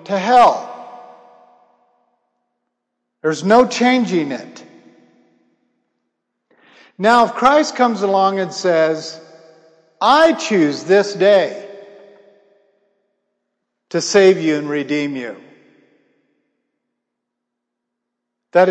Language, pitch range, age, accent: English, 155-200 Hz, 50-69, American